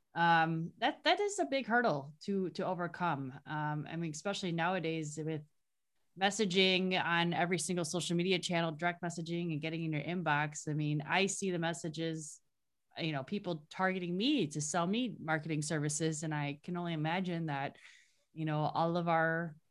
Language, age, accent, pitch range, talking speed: English, 20-39, American, 150-185 Hz, 175 wpm